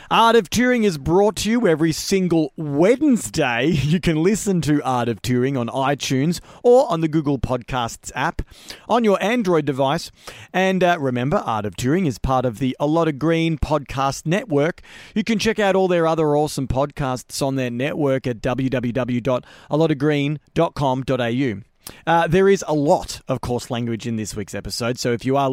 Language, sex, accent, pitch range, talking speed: English, male, Australian, 135-195 Hz, 175 wpm